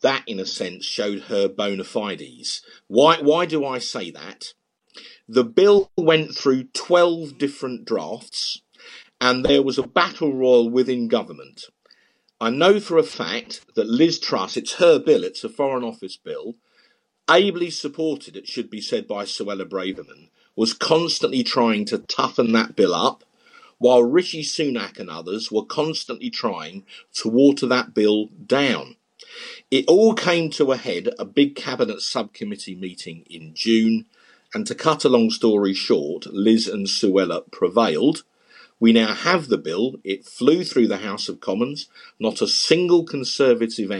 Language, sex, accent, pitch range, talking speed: English, male, British, 110-165 Hz, 155 wpm